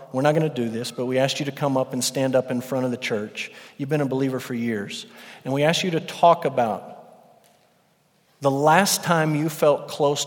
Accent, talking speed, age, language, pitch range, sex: American, 235 wpm, 50-69, English, 150-195 Hz, male